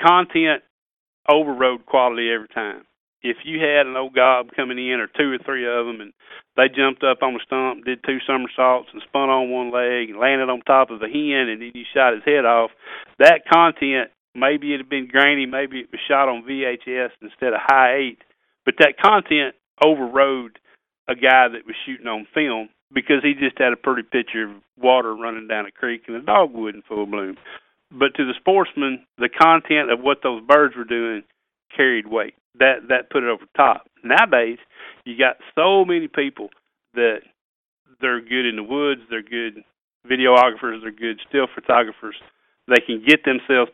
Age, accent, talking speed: 40-59, American, 190 wpm